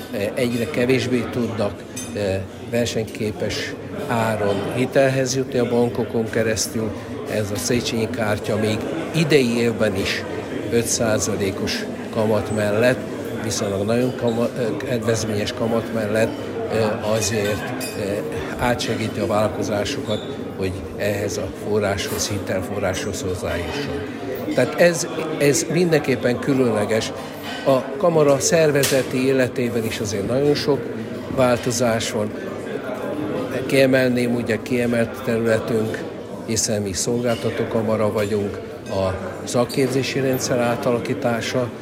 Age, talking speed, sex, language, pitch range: 60-79, 90 wpm, male, Hungarian, 110-125 Hz